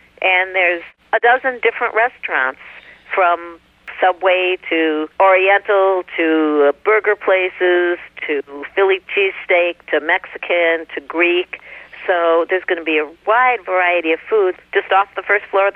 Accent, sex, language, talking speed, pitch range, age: American, female, English, 140 wpm, 160-200 Hz, 50-69